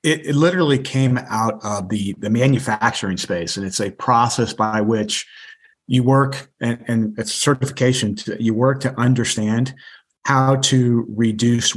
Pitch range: 105-125 Hz